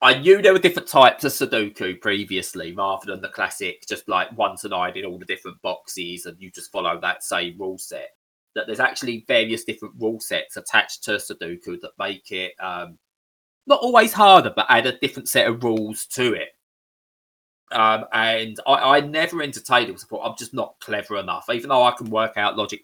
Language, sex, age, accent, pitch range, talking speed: English, male, 20-39, British, 100-125 Hz, 205 wpm